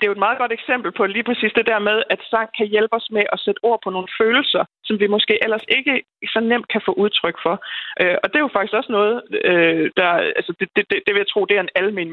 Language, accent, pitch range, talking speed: Danish, native, 185-230 Hz, 270 wpm